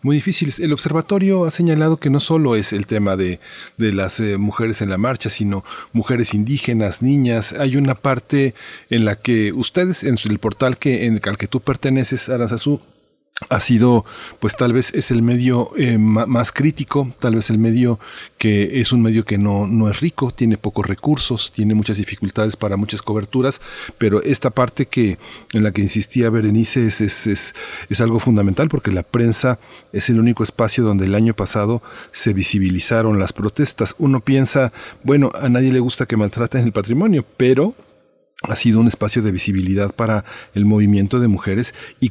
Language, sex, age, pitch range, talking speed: Spanish, male, 40-59, 105-130 Hz, 175 wpm